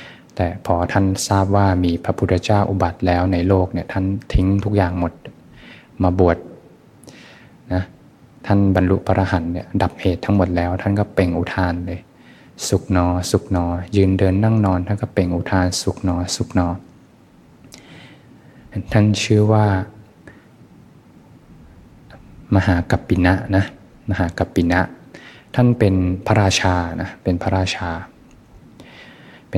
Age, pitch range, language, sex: 20-39, 90-100 Hz, Thai, male